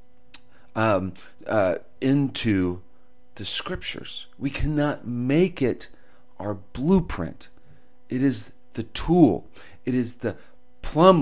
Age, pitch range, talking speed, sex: 40-59, 90-135 Hz, 100 wpm, male